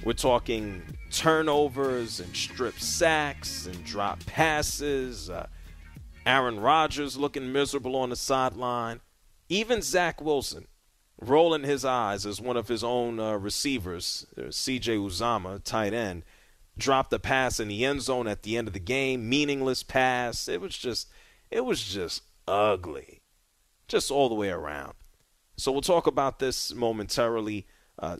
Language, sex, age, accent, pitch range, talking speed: English, male, 30-49, American, 100-130 Hz, 145 wpm